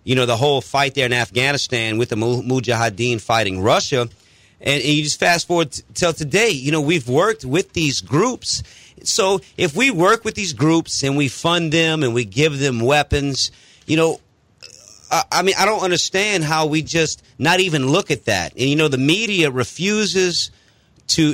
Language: English